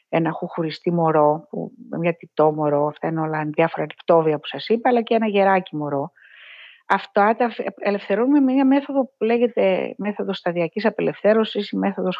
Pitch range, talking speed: 180-230 Hz, 160 wpm